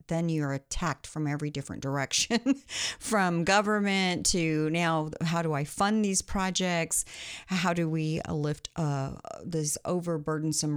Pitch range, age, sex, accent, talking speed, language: 155-190 Hz, 50-69, female, American, 135 wpm, English